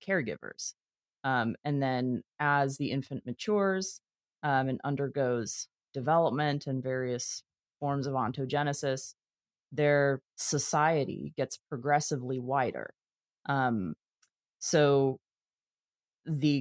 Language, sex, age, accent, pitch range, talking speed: English, female, 30-49, American, 130-150 Hz, 90 wpm